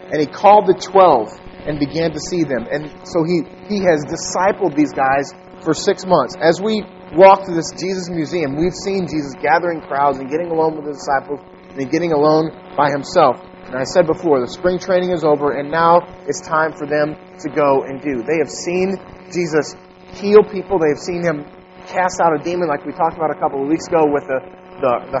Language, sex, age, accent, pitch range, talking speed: English, male, 30-49, American, 140-180 Hz, 215 wpm